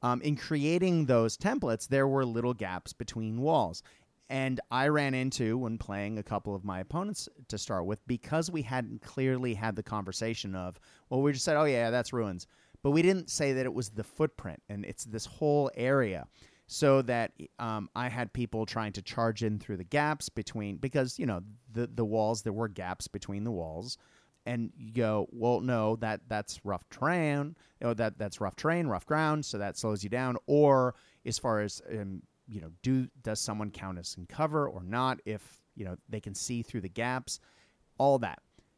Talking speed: 200 wpm